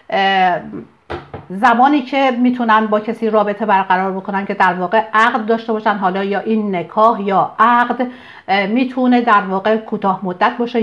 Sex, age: female, 50-69